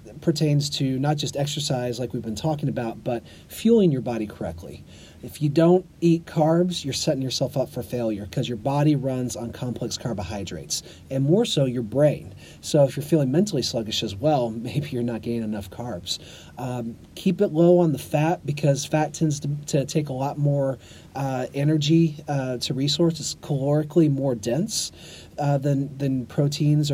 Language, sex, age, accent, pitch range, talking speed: English, male, 40-59, American, 120-150 Hz, 180 wpm